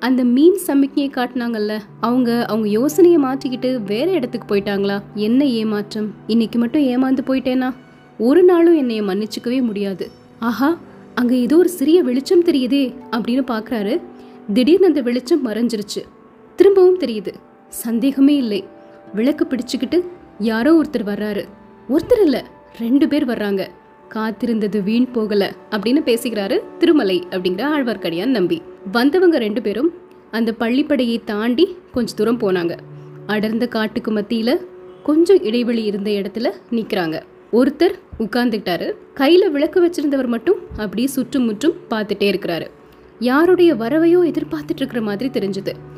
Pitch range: 215-295 Hz